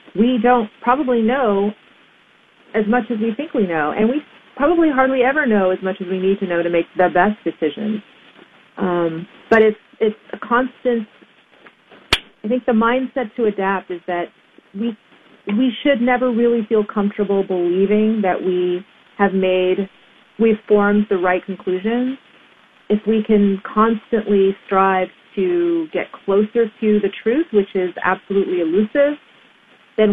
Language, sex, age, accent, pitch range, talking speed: English, female, 40-59, American, 185-230 Hz, 150 wpm